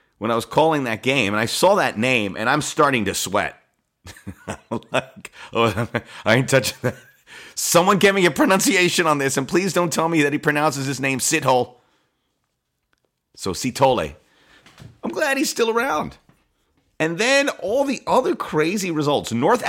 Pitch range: 115-170 Hz